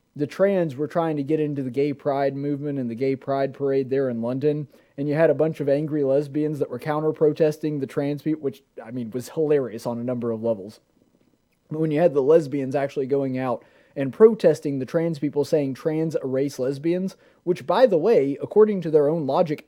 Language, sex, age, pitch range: English, male, 30-49, 135-175 Hz